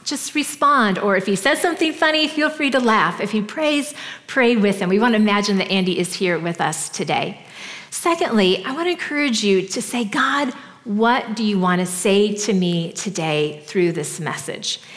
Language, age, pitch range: English, 40-59, 205-265 Hz